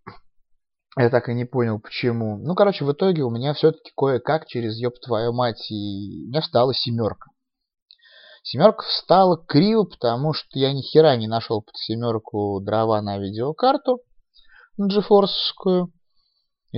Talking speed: 145 wpm